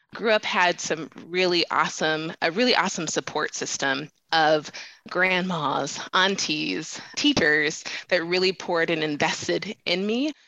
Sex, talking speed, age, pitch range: female, 125 wpm, 20-39, 160-195 Hz